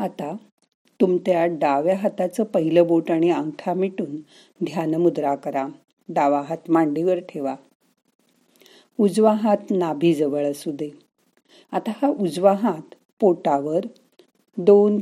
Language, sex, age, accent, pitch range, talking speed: Marathi, female, 40-59, native, 155-195 Hz, 110 wpm